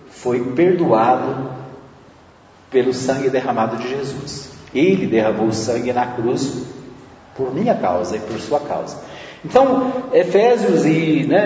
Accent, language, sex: Brazilian, Portuguese, male